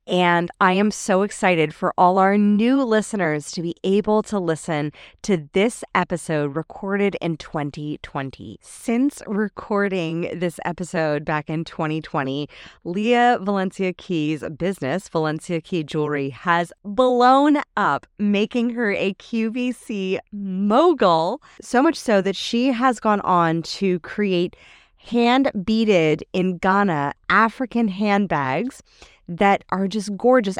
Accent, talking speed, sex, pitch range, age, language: American, 120 wpm, female, 160-210 Hz, 20-39, English